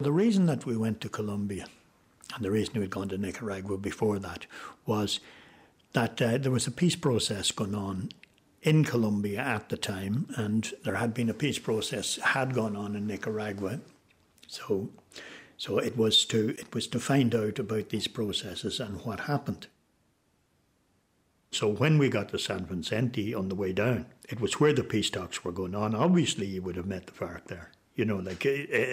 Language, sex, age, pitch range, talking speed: English, male, 60-79, 95-115 Hz, 195 wpm